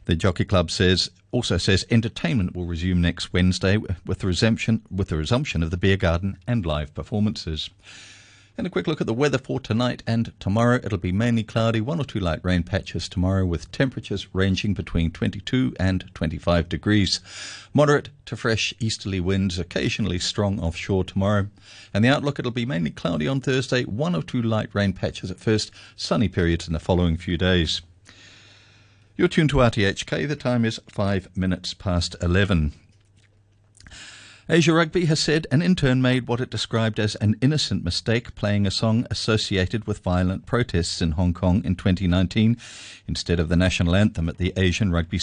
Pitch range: 90-110 Hz